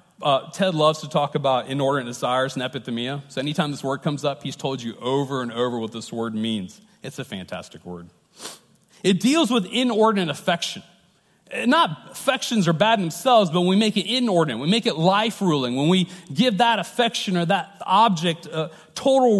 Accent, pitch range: American, 140-220 Hz